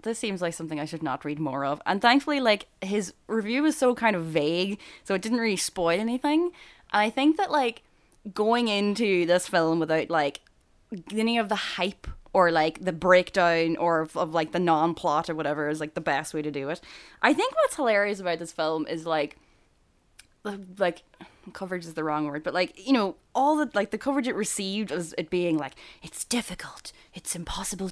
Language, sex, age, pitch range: English, female, 10-29, 170-270 Hz